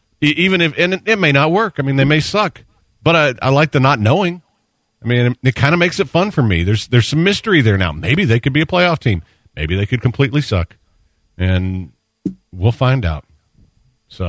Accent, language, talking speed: American, English, 225 wpm